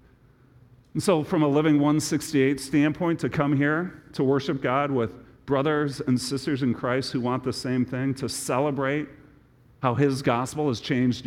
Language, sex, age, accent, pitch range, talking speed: English, male, 40-59, American, 120-150 Hz, 165 wpm